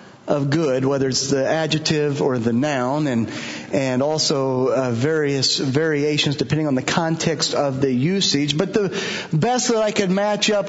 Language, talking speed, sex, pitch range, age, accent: English, 170 wpm, male, 155-205 Hz, 40-59, American